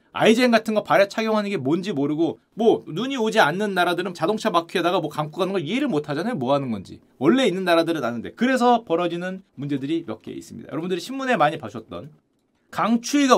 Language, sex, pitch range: Korean, male, 170-240 Hz